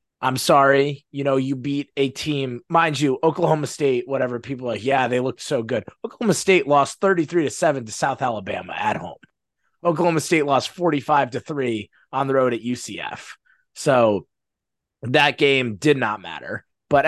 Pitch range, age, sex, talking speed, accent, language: 125-150 Hz, 20-39, male, 175 wpm, American, English